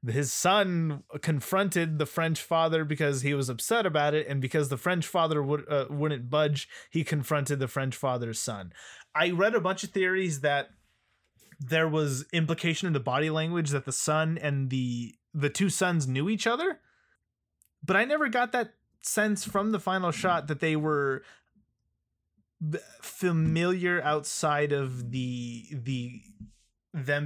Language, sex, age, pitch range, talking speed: English, male, 20-39, 130-165 Hz, 160 wpm